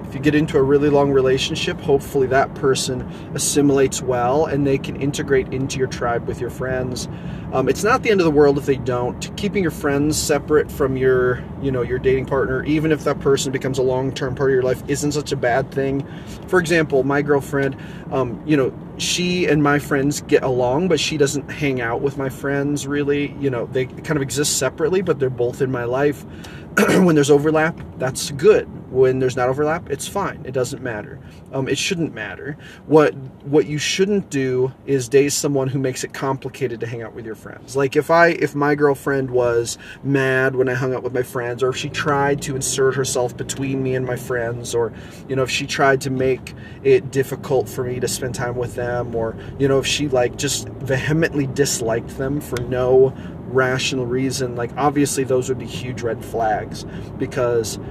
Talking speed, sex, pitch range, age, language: 205 wpm, male, 130-145 Hz, 30-49, English